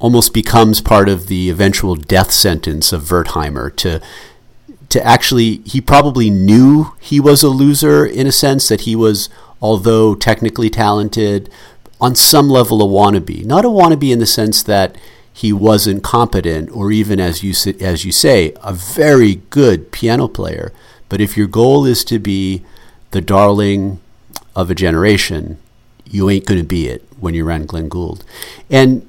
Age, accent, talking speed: 50-69, American, 160 wpm